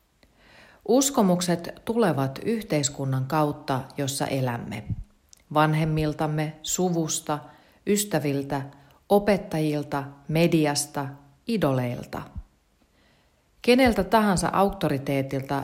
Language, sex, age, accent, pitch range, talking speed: Finnish, female, 40-59, native, 135-175 Hz, 60 wpm